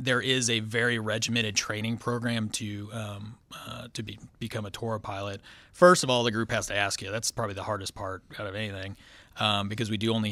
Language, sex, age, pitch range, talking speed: English, male, 30-49, 105-120 Hz, 220 wpm